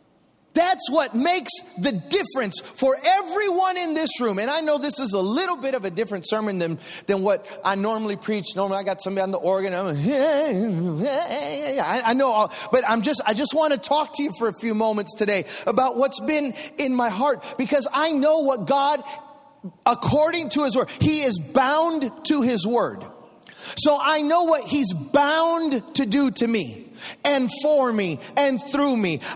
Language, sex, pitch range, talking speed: English, male, 230-300 Hz, 190 wpm